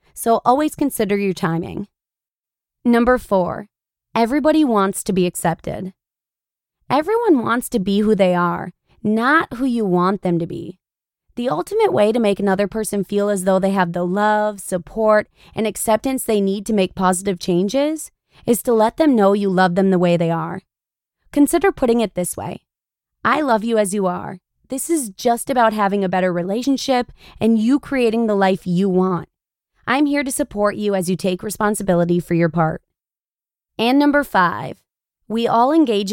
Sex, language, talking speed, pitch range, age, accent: female, English, 175 wpm, 185-240 Hz, 20-39, American